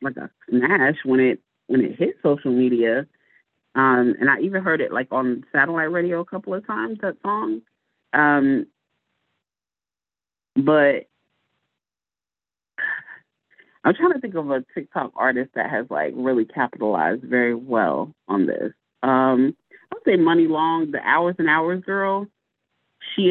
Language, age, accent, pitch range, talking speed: English, 30-49, American, 130-170 Hz, 145 wpm